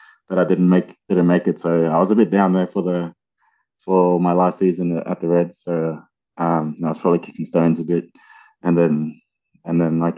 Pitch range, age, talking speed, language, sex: 80-95 Hz, 20-39, 220 wpm, English, male